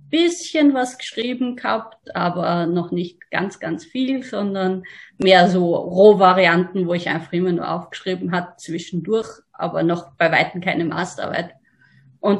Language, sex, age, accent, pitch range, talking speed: English, female, 20-39, German, 185-260 Hz, 140 wpm